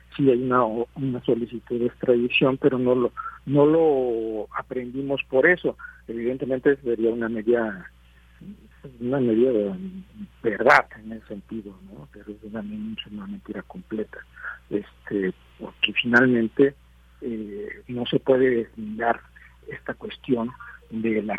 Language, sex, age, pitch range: Spanish, male, 50-69, 110-130 Hz